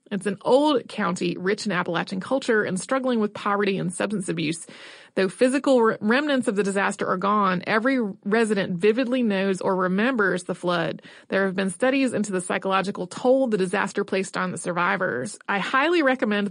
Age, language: 30-49, English